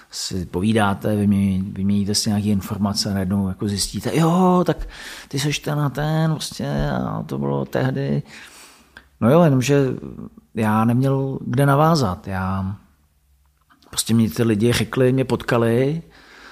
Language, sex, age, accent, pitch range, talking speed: Czech, male, 40-59, native, 95-135 Hz, 140 wpm